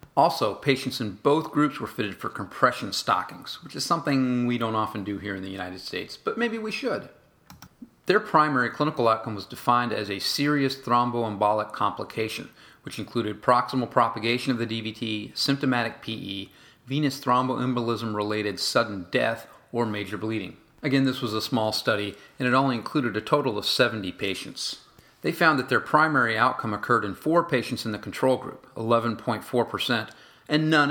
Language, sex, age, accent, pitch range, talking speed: English, male, 40-59, American, 110-130 Hz, 165 wpm